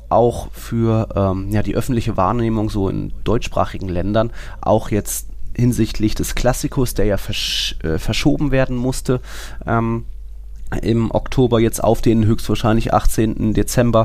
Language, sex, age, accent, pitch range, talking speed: German, male, 30-49, German, 95-115 Hz, 135 wpm